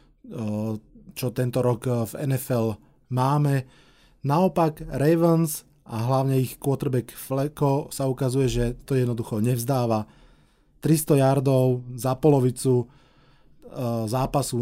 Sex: male